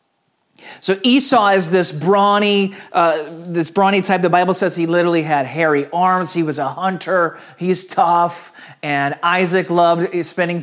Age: 40-59